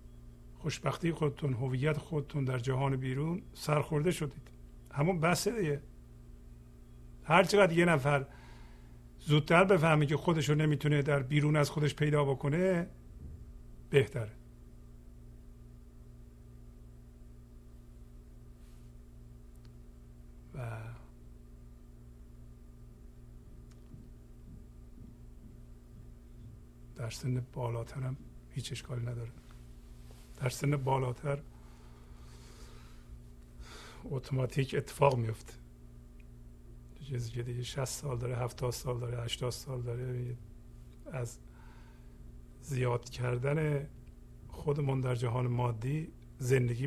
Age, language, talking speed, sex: 50-69, Persian, 75 wpm, male